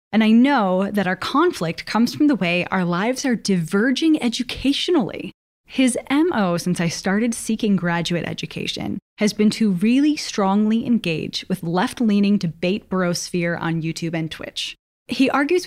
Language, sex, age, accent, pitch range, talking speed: English, female, 10-29, American, 185-255 Hz, 155 wpm